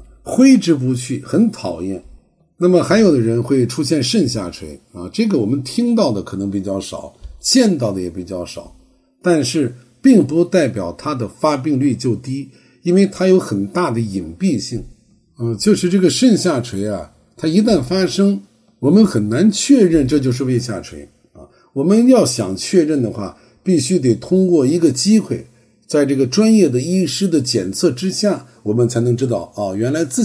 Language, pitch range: Chinese, 115-185 Hz